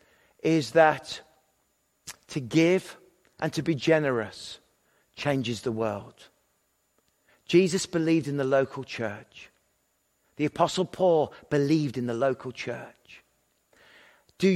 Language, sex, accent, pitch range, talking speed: English, male, British, 125-160 Hz, 105 wpm